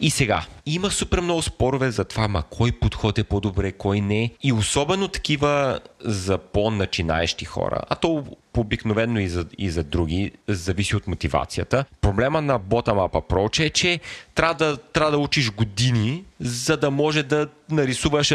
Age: 30-49